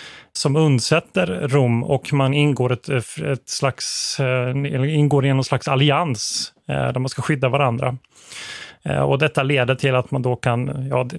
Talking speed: 150 wpm